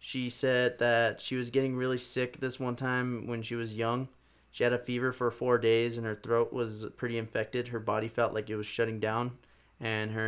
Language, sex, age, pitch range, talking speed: English, male, 20-39, 110-120 Hz, 220 wpm